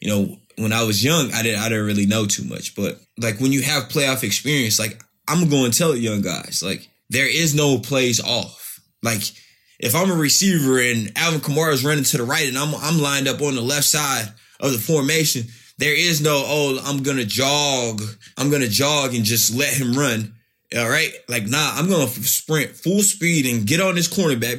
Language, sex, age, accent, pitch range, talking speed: English, male, 20-39, American, 110-150 Hz, 220 wpm